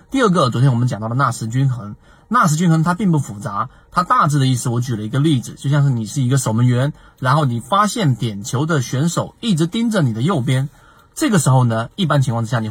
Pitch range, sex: 125-160 Hz, male